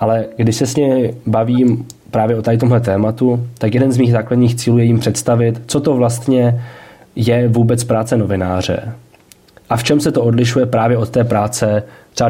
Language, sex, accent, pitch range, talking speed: Czech, male, native, 115-125 Hz, 180 wpm